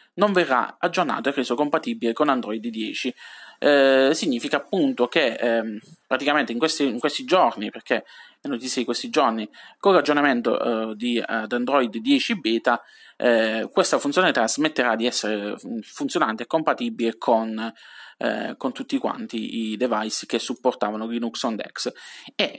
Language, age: Italian, 20-39